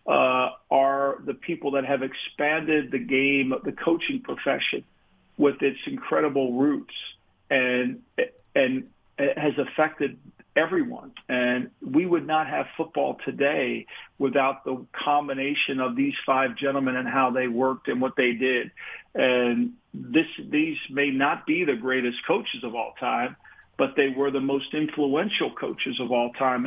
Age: 50-69